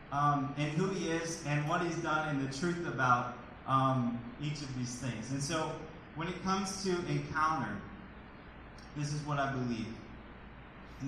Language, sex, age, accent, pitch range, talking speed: English, male, 20-39, American, 125-155 Hz, 170 wpm